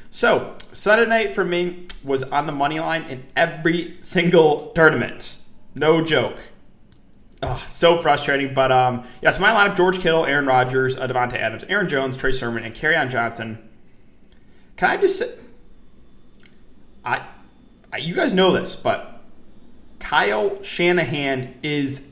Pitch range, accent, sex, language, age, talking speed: 125-175 Hz, American, male, English, 20-39, 145 wpm